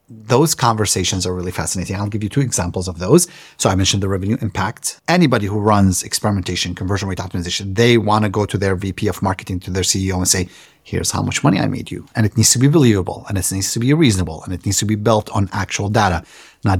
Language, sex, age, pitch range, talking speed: English, male, 30-49, 95-125 Hz, 245 wpm